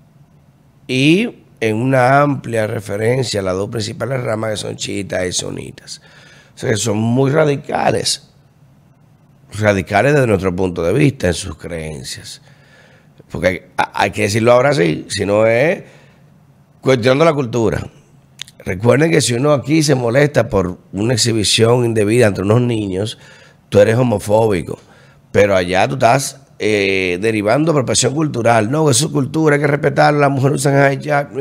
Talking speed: 155 wpm